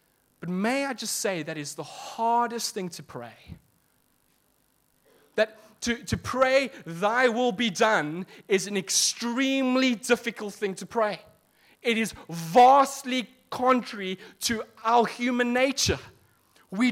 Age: 30-49